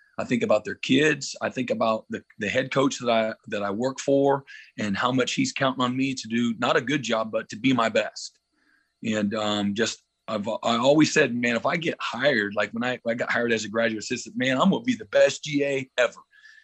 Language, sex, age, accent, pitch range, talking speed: English, male, 40-59, American, 110-135 Hz, 240 wpm